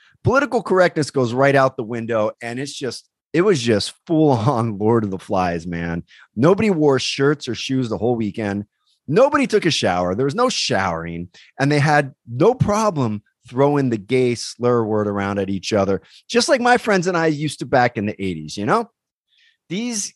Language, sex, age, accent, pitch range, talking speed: English, male, 30-49, American, 110-170 Hz, 195 wpm